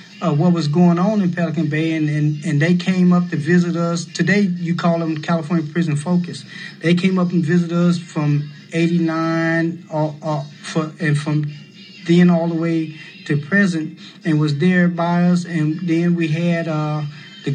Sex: male